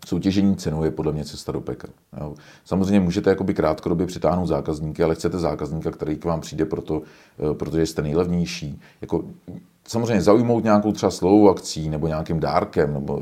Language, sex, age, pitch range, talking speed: Czech, male, 40-59, 80-90 Hz, 160 wpm